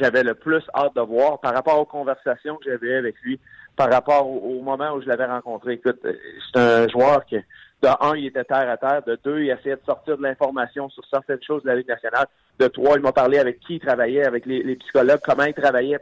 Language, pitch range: French, 125-155 Hz